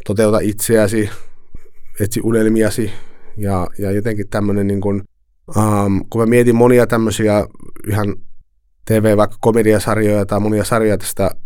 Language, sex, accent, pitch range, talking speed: Finnish, male, native, 95-110 Hz, 120 wpm